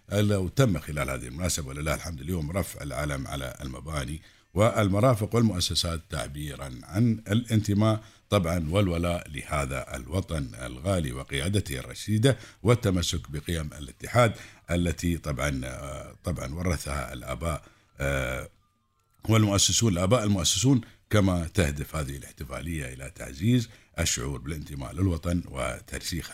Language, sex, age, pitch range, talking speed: Arabic, male, 50-69, 70-110 Hz, 105 wpm